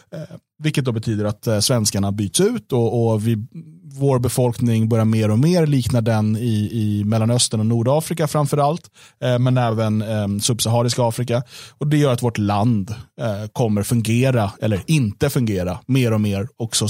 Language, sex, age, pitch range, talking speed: Swedish, male, 30-49, 110-140 Hz, 155 wpm